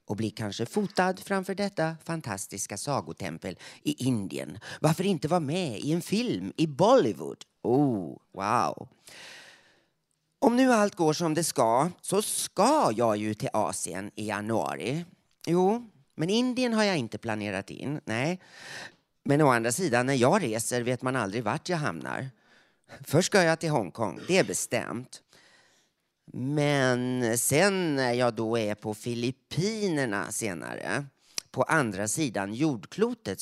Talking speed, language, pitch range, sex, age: 140 wpm, Swedish, 110-170 Hz, male, 30-49